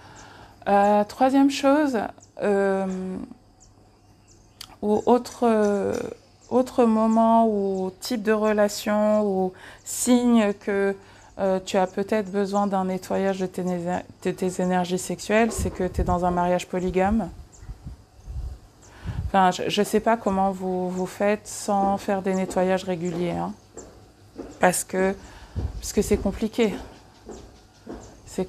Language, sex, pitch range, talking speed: English, female, 180-210 Hz, 120 wpm